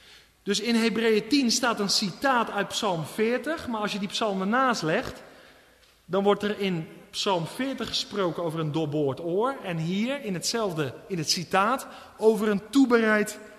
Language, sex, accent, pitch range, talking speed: Dutch, male, Dutch, 190-260 Hz, 170 wpm